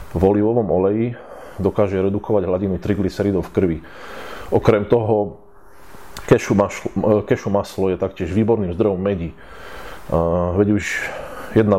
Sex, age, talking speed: male, 30-49, 115 wpm